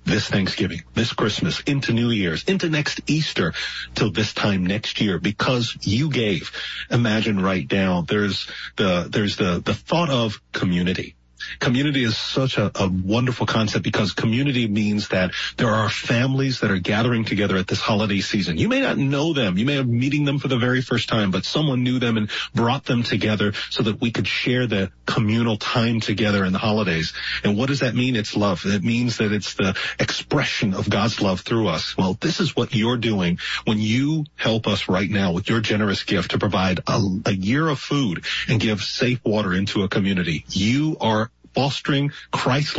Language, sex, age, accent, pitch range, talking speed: English, male, 40-59, American, 100-130 Hz, 195 wpm